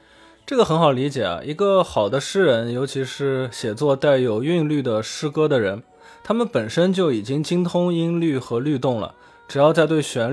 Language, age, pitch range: Chinese, 20-39, 125-175 Hz